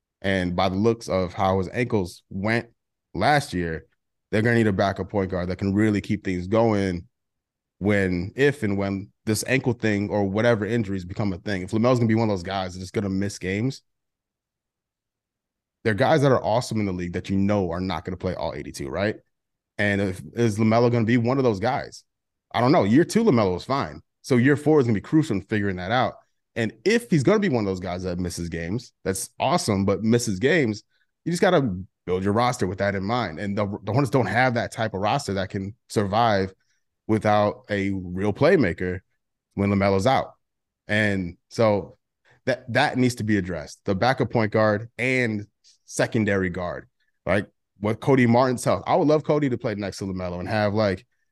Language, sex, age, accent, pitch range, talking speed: English, male, 30-49, American, 95-120 Hz, 215 wpm